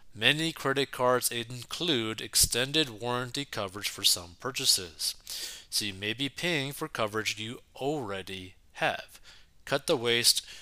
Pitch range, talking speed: 105-135 Hz, 130 wpm